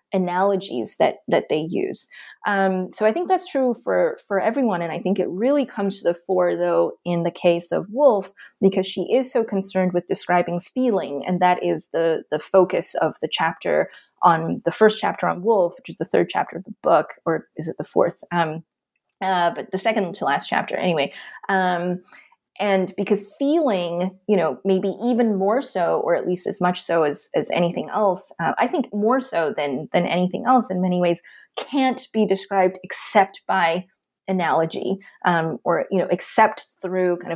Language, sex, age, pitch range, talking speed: English, female, 20-39, 175-210 Hz, 190 wpm